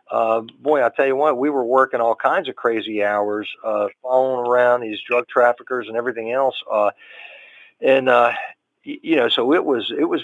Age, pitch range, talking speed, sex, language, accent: 40-59, 110-140 Hz, 195 wpm, male, English, American